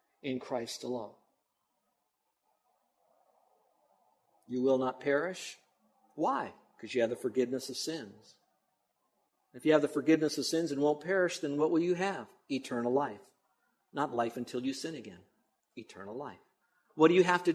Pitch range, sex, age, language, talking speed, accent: 130-170 Hz, male, 50-69, English, 155 wpm, American